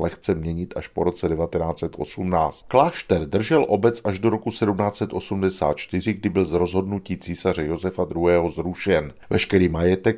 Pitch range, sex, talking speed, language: 85-105 Hz, male, 135 wpm, Czech